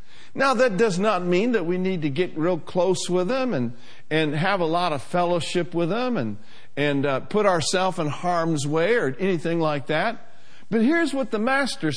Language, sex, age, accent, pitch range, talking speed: English, male, 60-79, American, 150-240 Hz, 200 wpm